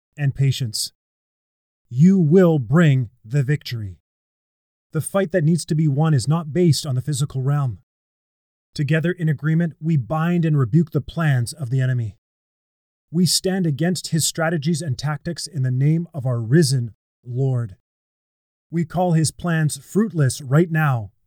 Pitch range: 125-170 Hz